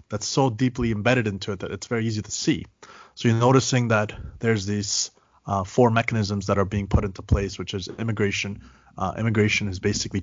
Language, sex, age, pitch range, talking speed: English, male, 30-49, 100-115 Hz, 200 wpm